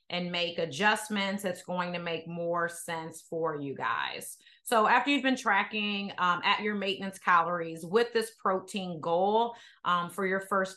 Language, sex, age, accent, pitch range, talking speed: English, female, 30-49, American, 170-205 Hz, 165 wpm